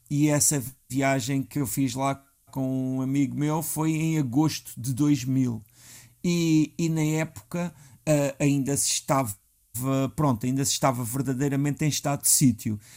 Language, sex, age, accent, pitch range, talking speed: Portuguese, male, 50-69, Portuguese, 130-160 Hz, 150 wpm